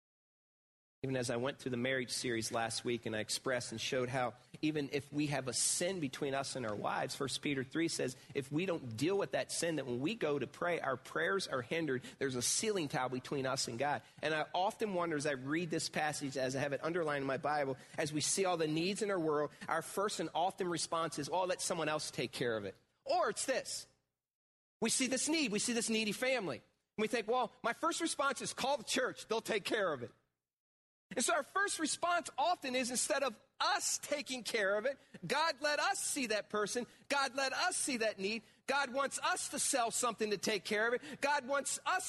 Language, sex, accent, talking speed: English, male, American, 235 wpm